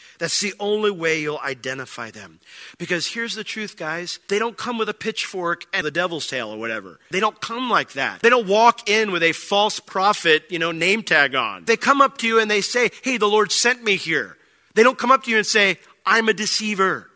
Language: English